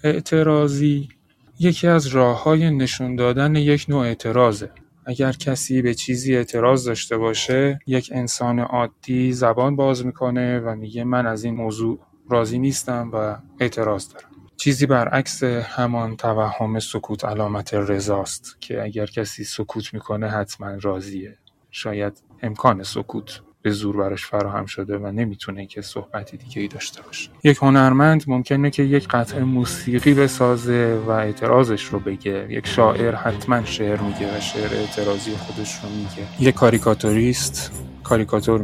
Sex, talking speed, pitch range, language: male, 140 wpm, 105-130 Hz, Persian